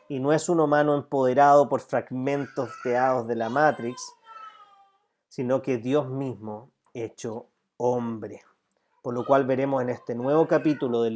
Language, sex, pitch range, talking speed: Spanish, male, 120-160 Hz, 145 wpm